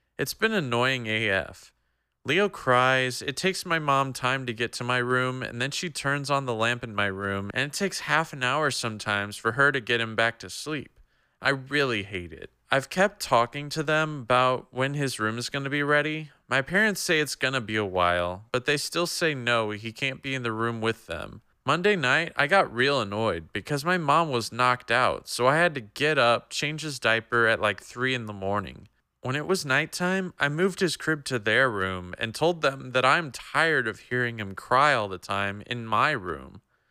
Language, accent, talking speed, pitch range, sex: English, American, 220 wpm, 110-150 Hz, male